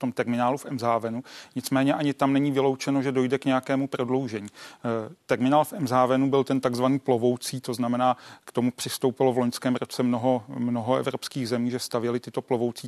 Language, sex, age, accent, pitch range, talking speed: Czech, male, 40-59, native, 120-130 Hz, 175 wpm